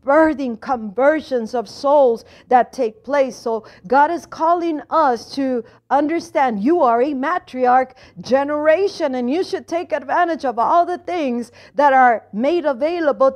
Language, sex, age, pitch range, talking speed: English, female, 40-59, 240-310 Hz, 145 wpm